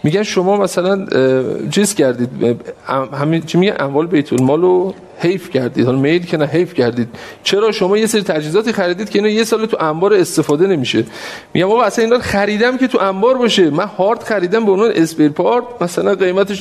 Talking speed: 190 wpm